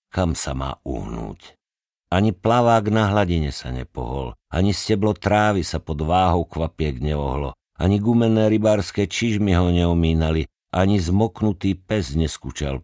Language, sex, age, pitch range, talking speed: Slovak, male, 50-69, 70-90 Hz, 130 wpm